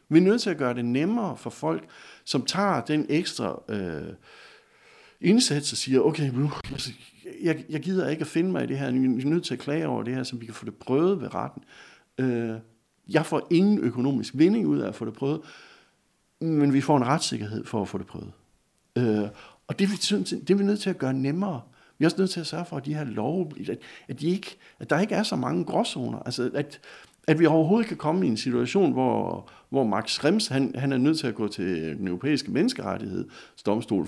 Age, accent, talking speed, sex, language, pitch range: 60-79, native, 230 wpm, male, Danish, 125-175 Hz